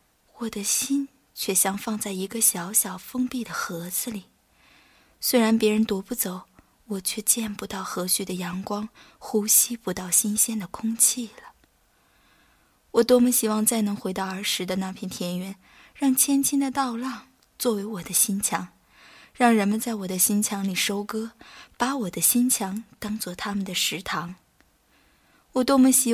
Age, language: 20-39, Chinese